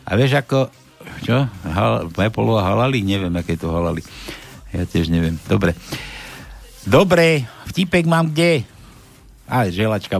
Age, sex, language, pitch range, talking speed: 60-79, male, Slovak, 110-165 Hz, 135 wpm